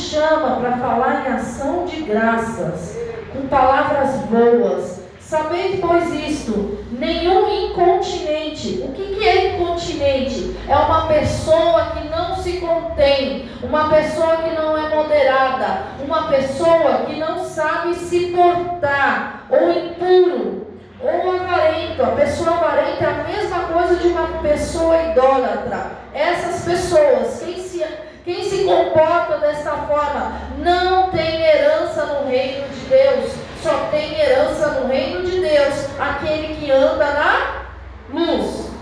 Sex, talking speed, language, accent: female, 130 wpm, Portuguese, Brazilian